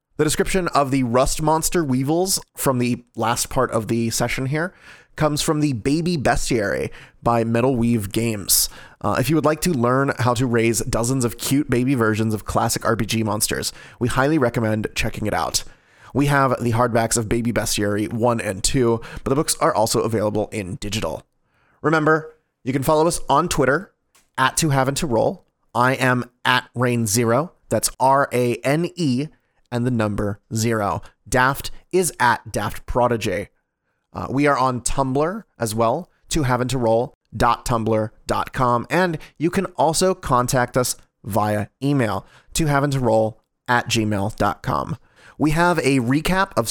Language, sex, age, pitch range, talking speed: English, male, 30-49, 115-145 Hz, 160 wpm